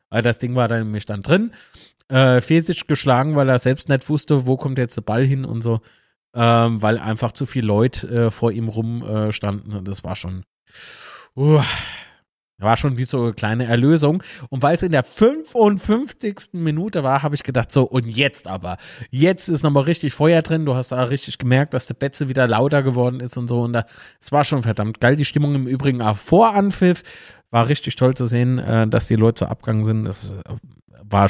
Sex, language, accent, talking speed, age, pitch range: male, German, German, 215 wpm, 30-49, 115-150 Hz